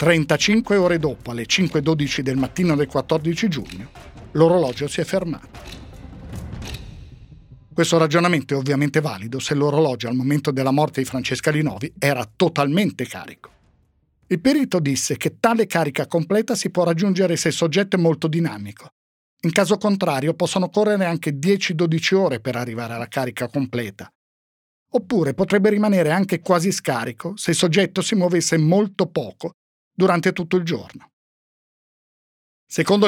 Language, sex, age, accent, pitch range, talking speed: Italian, male, 50-69, native, 140-180 Hz, 140 wpm